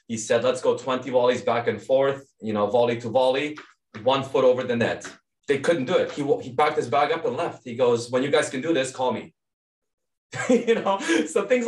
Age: 20-39